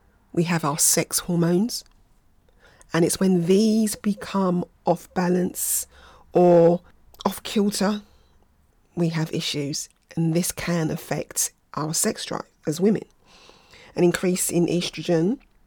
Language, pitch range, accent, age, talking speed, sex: English, 160-185 Hz, British, 40-59, 120 wpm, female